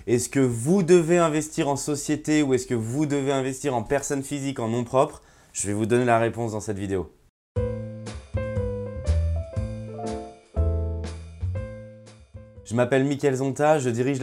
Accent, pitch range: French, 120-150 Hz